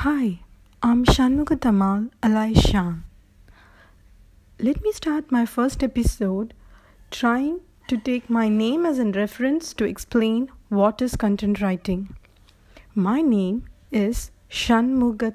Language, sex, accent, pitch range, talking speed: English, female, Indian, 190-250 Hz, 115 wpm